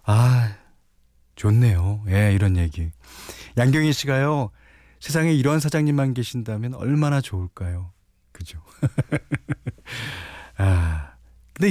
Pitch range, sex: 90-135 Hz, male